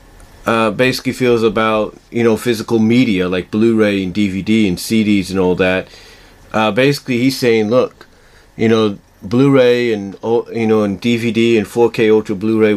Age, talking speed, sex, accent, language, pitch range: 40-59, 160 wpm, male, American, English, 100-125 Hz